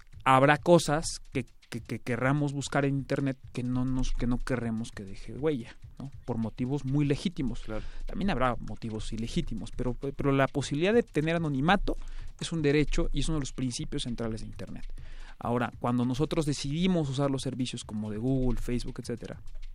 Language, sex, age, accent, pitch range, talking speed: Spanish, male, 30-49, Mexican, 120-170 Hz, 170 wpm